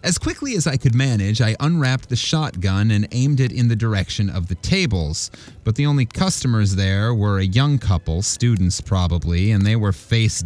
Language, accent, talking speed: English, American, 195 wpm